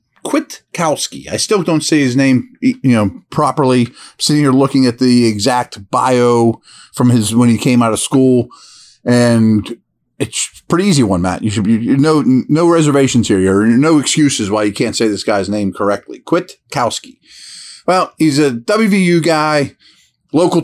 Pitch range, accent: 110-140 Hz, American